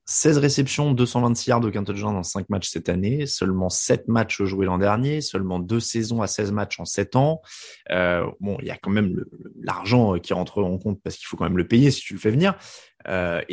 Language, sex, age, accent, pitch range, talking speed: French, male, 20-39, French, 100-140 Hz, 235 wpm